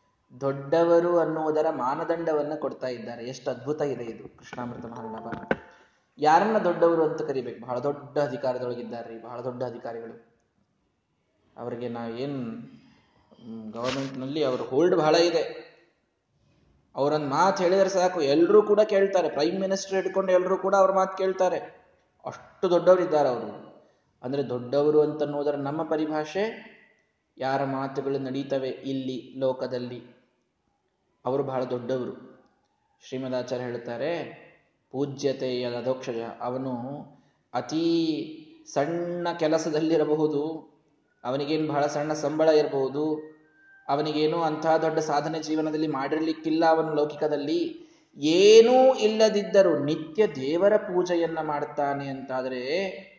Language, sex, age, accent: Kannada, male, 20-39, native